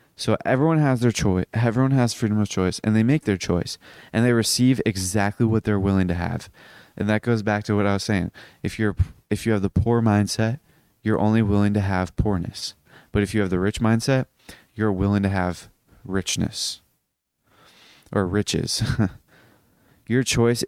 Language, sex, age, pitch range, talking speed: English, male, 20-39, 100-120 Hz, 185 wpm